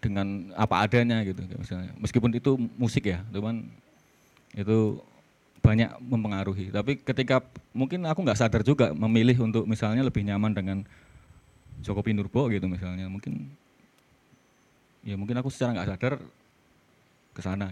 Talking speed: 130 wpm